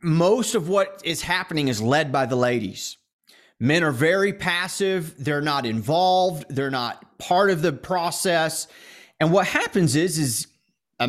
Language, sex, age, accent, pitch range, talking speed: English, male, 30-49, American, 135-185 Hz, 155 wpm